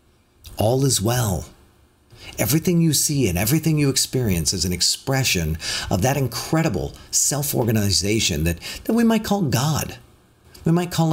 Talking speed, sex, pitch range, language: 140 wpm, male, 95-140 Hz, English